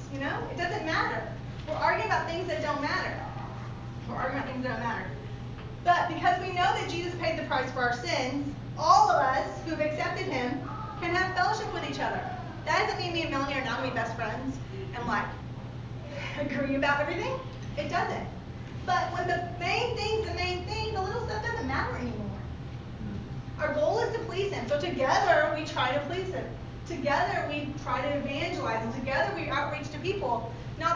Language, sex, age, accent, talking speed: English, female, 30-49, American, 200 wpm